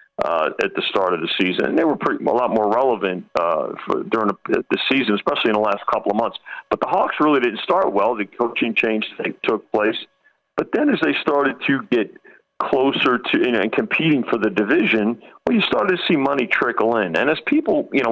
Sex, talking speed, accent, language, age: male, 230 wpm, American, English, 40-59